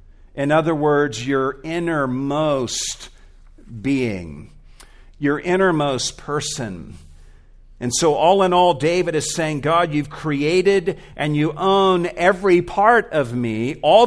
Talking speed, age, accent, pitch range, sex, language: 120 wpm, 50-69, American, 115-165 Hz, male, English